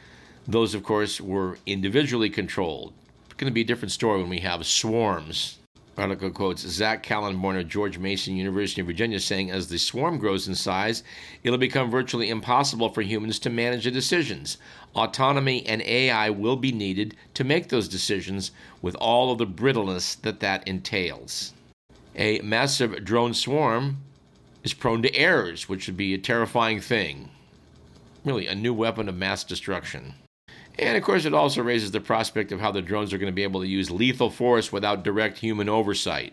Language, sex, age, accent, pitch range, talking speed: English, male, 50-69, American, 95-120 Hz, 180 wpm